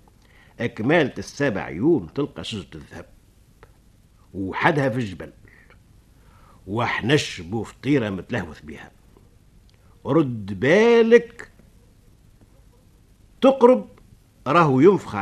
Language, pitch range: Arabic, 100-155 Hz